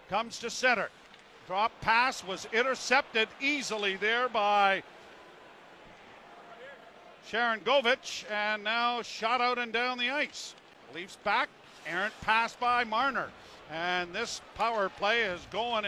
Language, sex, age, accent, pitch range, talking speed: English, male, 50-69, American, 220-255 Hz, 120 wpm